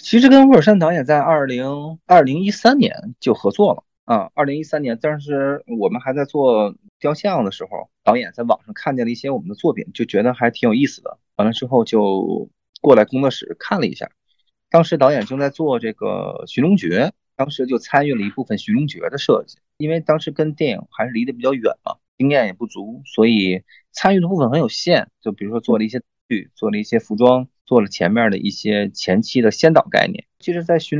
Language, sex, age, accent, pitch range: Chinese, male, 20-39, native, 105-160 Hz